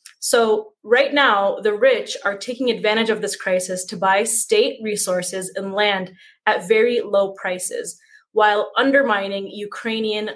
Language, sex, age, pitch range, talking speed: English, female, 20-39, 195-270 Hz, 140 wpm